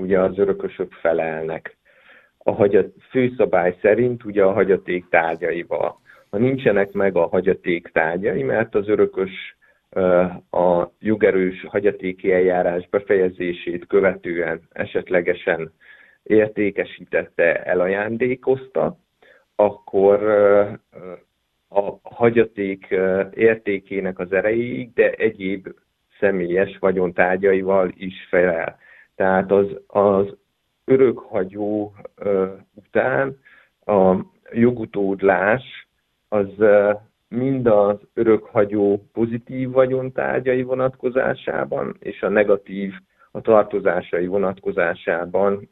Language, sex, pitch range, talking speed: Hungarian, male, 95-110 Hz, 80 wpm